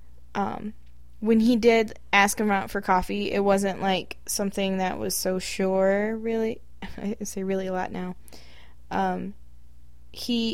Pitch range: 175-205 Hz